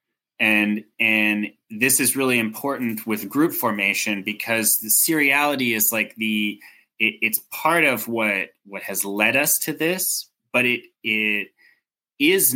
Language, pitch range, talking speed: English, 105-125 Hz, 140 wpm